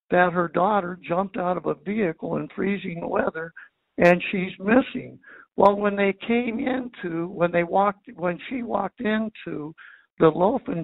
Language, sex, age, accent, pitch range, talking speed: English, male, 60-79, American, 175-220 Hz, 155 wpm